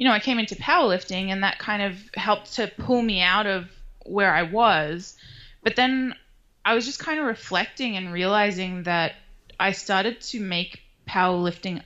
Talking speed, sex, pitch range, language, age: 175 wpm, female, 175-210 Hz, English, 20-39